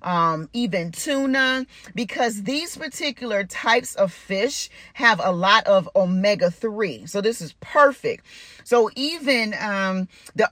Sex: female